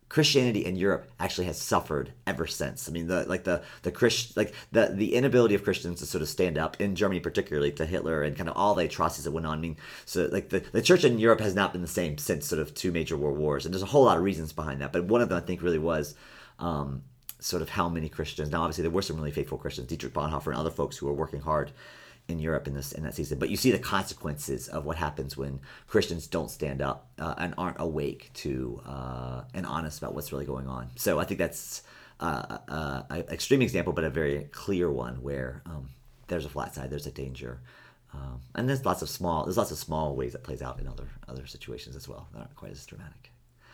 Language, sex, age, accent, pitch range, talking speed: English, male, 40-59, American, 70-100 Hz, 250 wpm